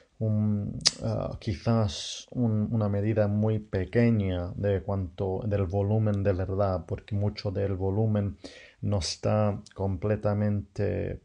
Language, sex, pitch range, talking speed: English, male, 100-110 Hz, 110 wpm